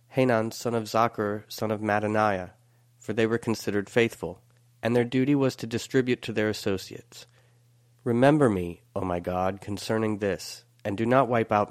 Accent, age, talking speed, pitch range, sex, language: American, 30-49, 170 wpm, 110-125 Hz, male, English